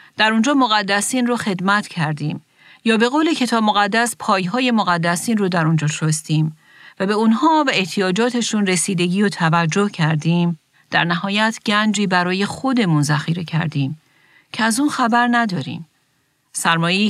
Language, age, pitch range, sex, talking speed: Persian, 40-59, 155-205 Hz, female, 140 wpm